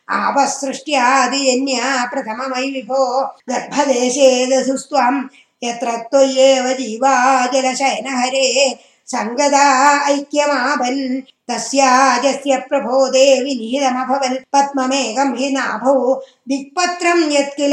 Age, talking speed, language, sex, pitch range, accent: 20-39, 40 wpm, Tamil, female, 255-280 Hz, native